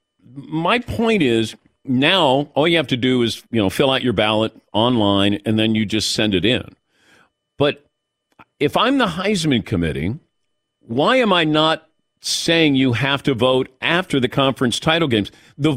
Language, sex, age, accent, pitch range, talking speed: English, male, 50-69, American, 125-175 Hz, 170 wpm